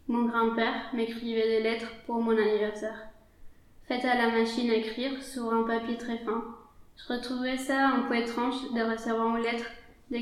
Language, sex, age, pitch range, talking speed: French, female, 20-39, 225-245 Hz, 170 wpm